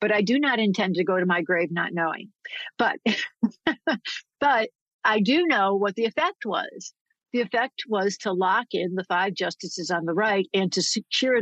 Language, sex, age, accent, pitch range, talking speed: English, female, 50-69, American, 180-225 Hz, 190 wpm